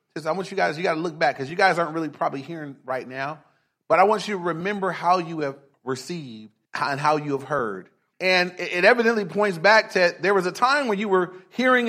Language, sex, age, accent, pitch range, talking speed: English, male, 30-49, American, 160-210 Hz, 235 wpm